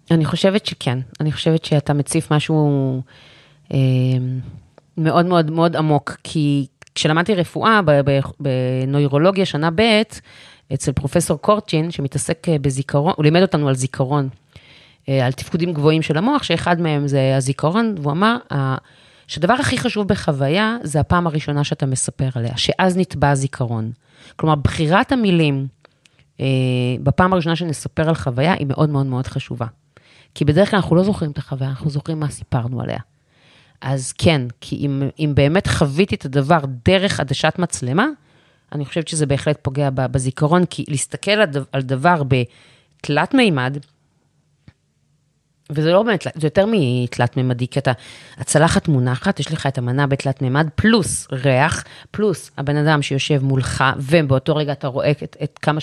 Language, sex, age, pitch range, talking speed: Hebrew, female, 30-49, 135-165 Hz, 140 wpm